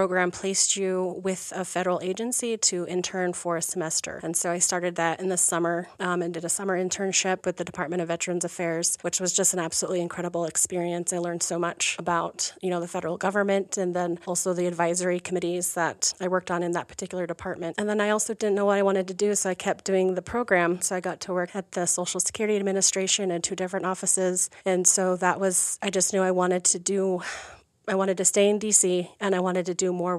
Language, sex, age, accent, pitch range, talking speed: English, female, 30-49, American, 175-190 Hz, 235 wpm